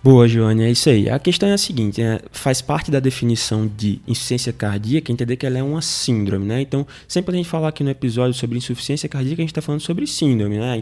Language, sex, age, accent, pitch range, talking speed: Portuguese, male, 20-39, Brazilian, 120-155 Hz, 240 wpm